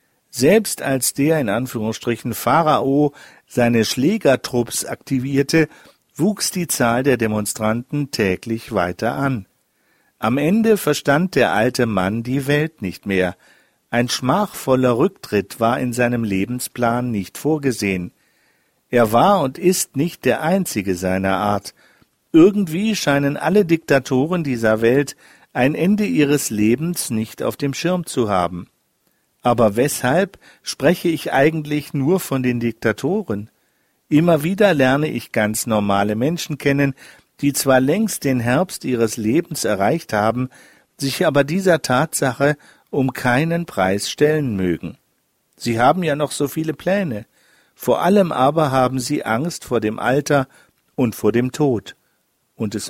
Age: 50-69